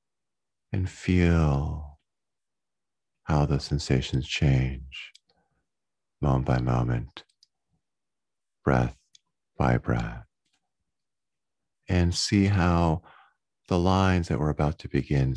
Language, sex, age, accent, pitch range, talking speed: English, male, 40-59, American, 70-95 Hz, 85 wpm